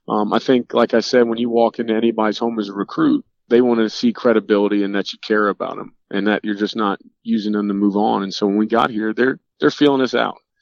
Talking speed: 265 wpm